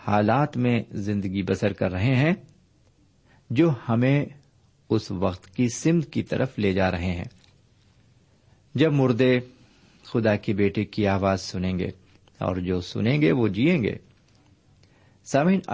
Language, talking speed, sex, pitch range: Urdu, 135 wpm, male, 100-135 Hz